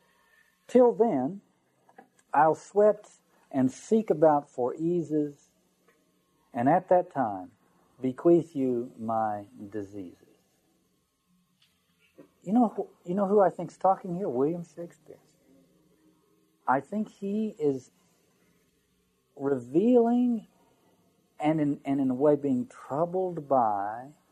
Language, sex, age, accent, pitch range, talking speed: English, male, 50-69, American, 145-200 Hz, 105 wpm